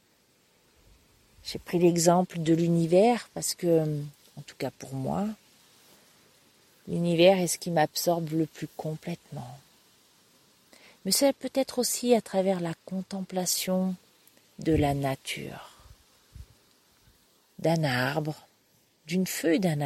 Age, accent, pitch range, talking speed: 40-59, French, 150-190 Hz, 110 wpm